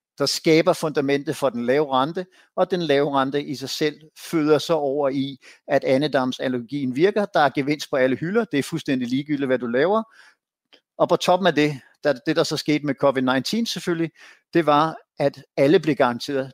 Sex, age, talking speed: male, 60-79, 190 wpm